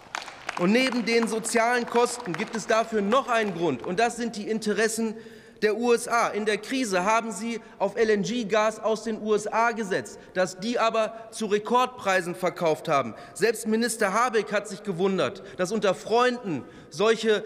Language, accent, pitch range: German, German, 215-250 Hz